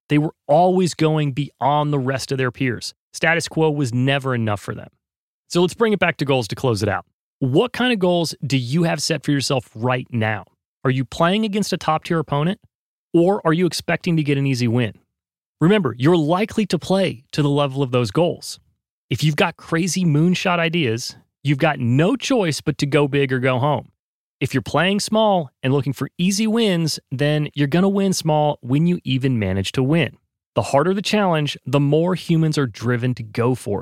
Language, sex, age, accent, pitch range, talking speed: English, male, 30-49, American, 130-180 Hz, 210 wpm